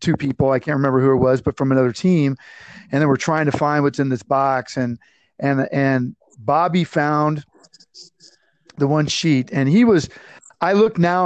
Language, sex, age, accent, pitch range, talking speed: English, male, 40-59, American, 135-165 Hz, 190 wpm